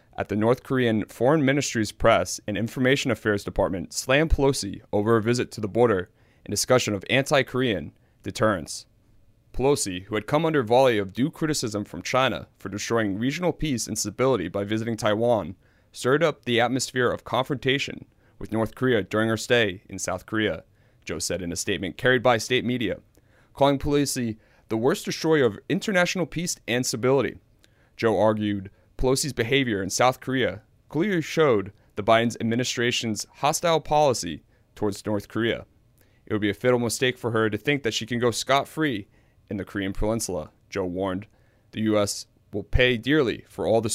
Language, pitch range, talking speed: English, 105-130 Hz, 170 wpm